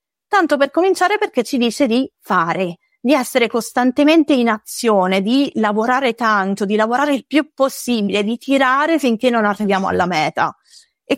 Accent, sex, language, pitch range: native, female, Italian, 195-280 Hz